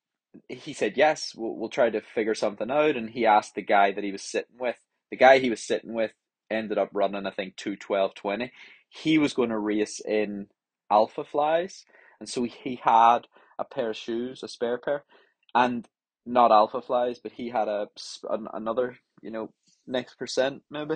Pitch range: 110-130 Hz